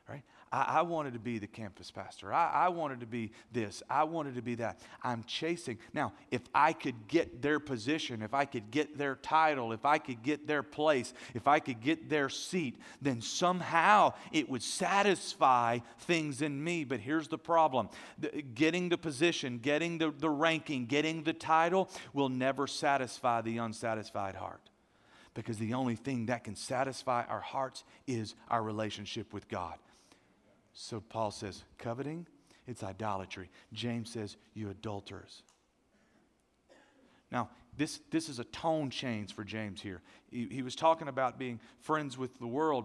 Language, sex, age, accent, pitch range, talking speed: English, male, 40-59, American, 115-155 Hz, 165 wpm